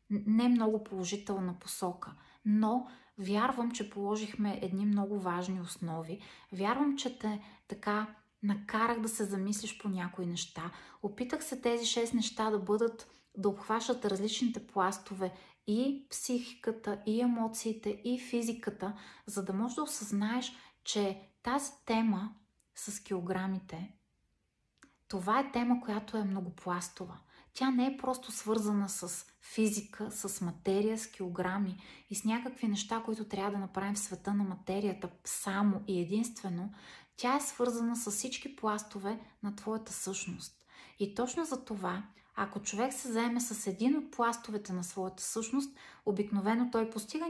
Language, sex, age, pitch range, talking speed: Bulgarian, female, 30-49, 195-235 Hz, 140 wpm